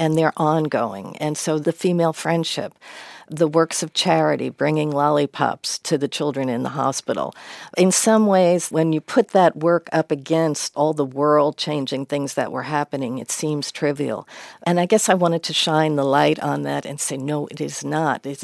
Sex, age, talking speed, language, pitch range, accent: female, 50-69, 190 wpm, English, 135-160 Hz, American